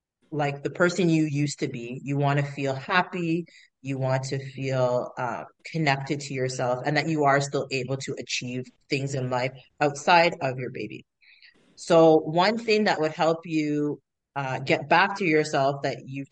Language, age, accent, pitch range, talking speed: English, 30-49, American, 135-160 Hz, 180 wpm